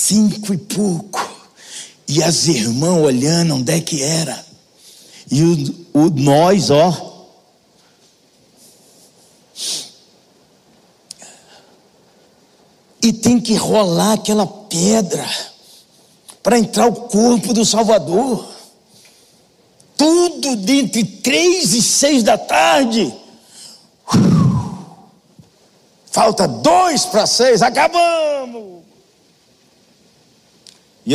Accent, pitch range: Brazilian, 150-215 Hz